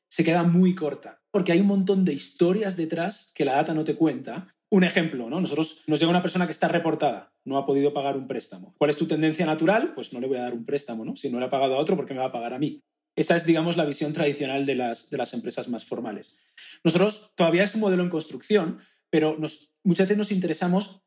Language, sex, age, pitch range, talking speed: Spanish, male, 30-49, 150-190 Hz, 250 wpm